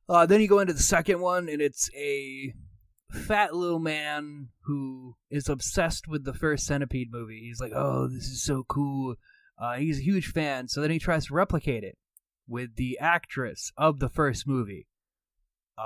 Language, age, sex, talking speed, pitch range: English, 20-39, male, 180 wpm, 120-170 Hz